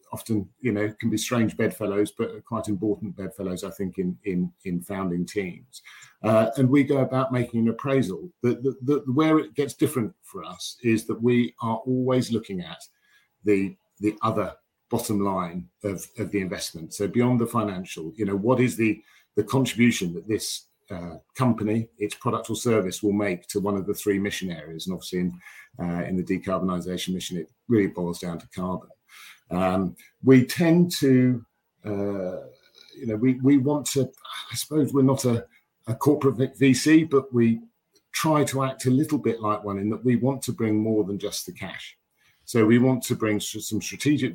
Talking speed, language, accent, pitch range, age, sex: 190 wpm, English, British, 95-125 Hz, 50-69, male